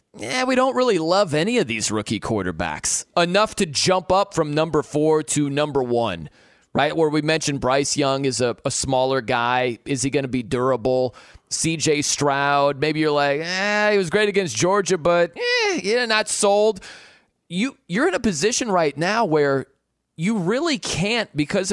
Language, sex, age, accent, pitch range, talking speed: English, male, 30-49, American, 145-205 Hz, 180 wpm